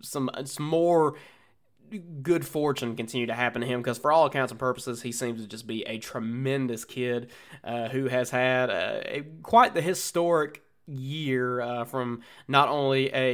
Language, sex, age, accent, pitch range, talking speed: English, male, 20-39, American, 125-155 Hz, 175 wpm